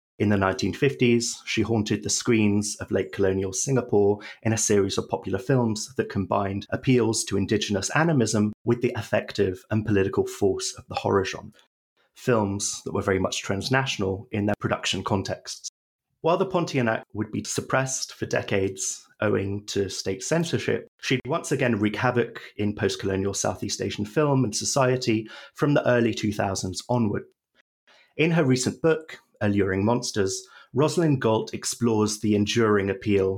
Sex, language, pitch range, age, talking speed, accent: male, English, 100-125 Hz, 30-49, 155 wpm, British